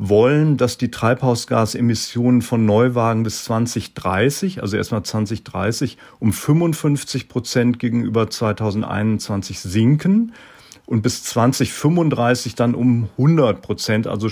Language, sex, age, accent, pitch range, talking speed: German, male, 40-59, German, 110-135 Hz, 105 wpm